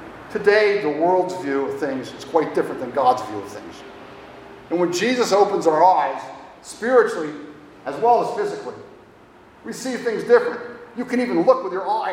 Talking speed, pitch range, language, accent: 180 wpm, 175-245 Hz, English, American